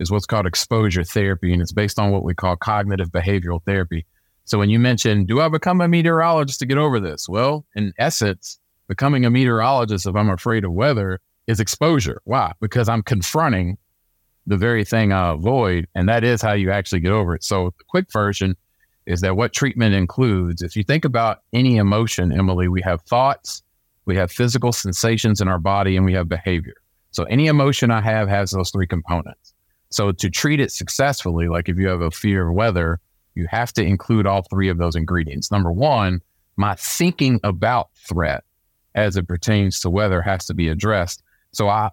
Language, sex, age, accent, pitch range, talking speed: English, male, 40-59, American, 90-115 Hz, 195 wpm